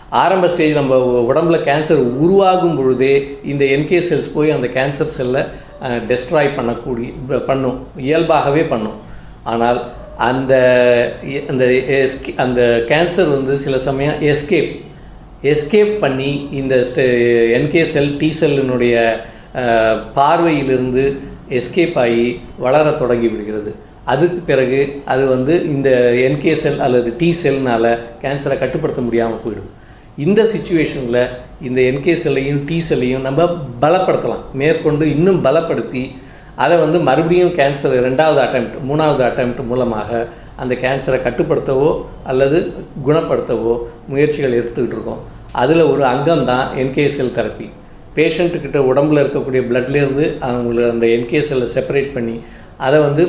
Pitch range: 120-150 Hz